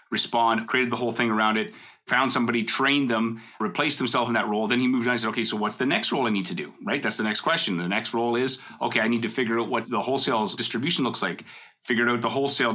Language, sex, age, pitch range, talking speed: English, male, 30-49, 105-120 Hz, 270 wpm